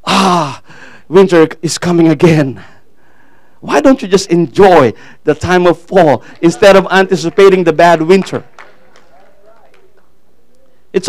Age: 50-69